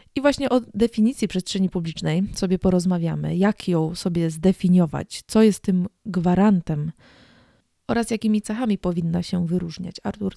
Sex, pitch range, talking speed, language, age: female, 180-205 Hz, 135 wpm, Polish, 20-39